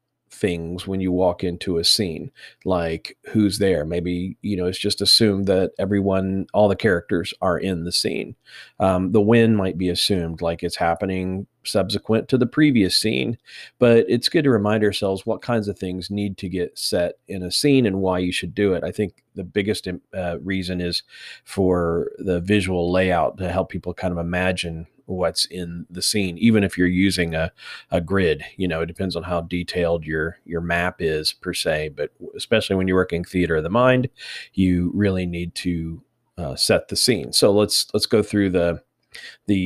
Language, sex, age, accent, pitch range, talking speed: English, male, 40-59, American, 90-110 Hz, 190 wpm